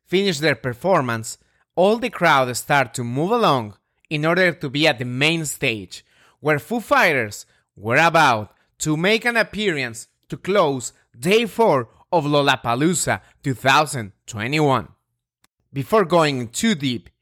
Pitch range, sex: 130-195 Hz, male